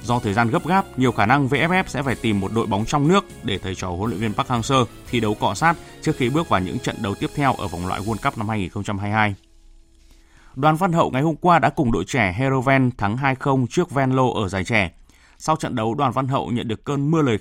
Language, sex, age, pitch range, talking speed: Vietnamese, male, 20-39, 100-135 Hz, 255 wpm